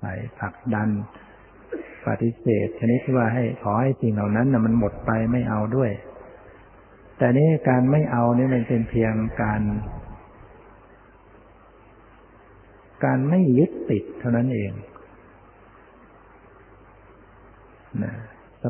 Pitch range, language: 105-120 Hz, Thai